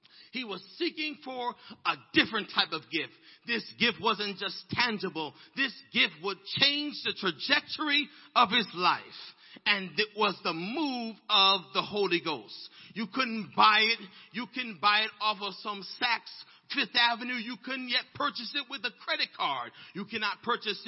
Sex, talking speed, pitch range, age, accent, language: male, 165 wpm, 195-255 Hz, 40-59, American, English